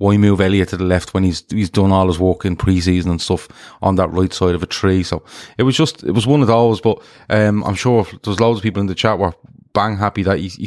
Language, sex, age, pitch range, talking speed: English, male, 20-39, 95-115 Hz, 275 wpm